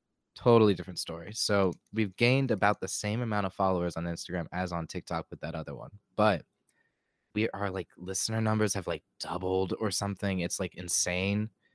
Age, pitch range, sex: 20-39, 90-105 Hz, male